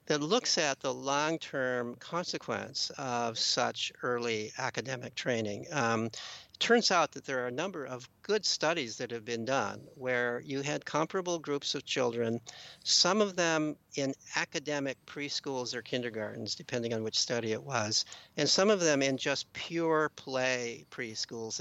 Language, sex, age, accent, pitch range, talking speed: English, male, 60-79, American, 120-155 Hz, 160 wpm